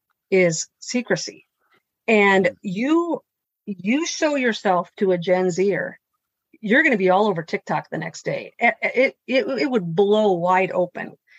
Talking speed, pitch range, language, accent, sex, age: 150 wpm, 175-210 Hz, English, American, female, 50-69